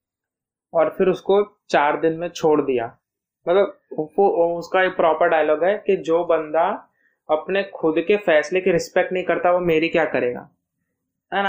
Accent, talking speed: native, 150 wpm